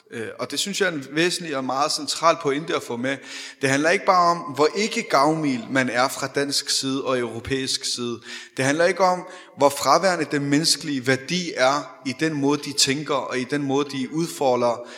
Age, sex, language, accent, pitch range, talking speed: 30-49, male, Danish, native, 140-195 Hz, 205 wpm